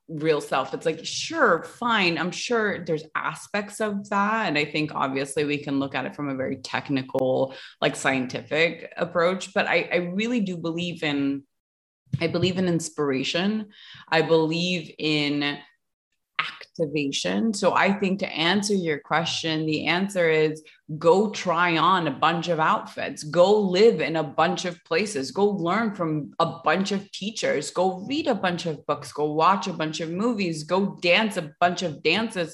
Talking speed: 170 wpm